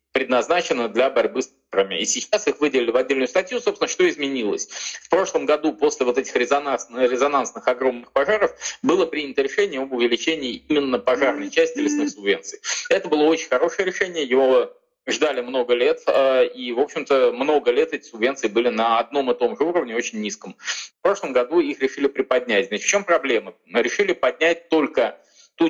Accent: native